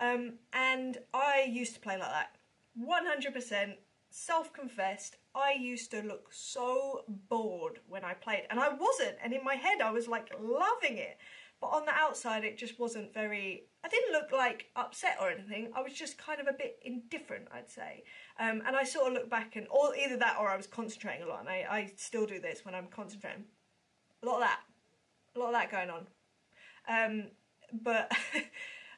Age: 30-49